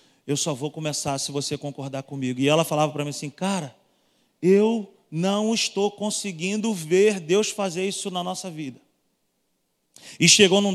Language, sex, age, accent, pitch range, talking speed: Portuguese, male, 40-59, Brazilian, 145-195 Hz, 160 wpm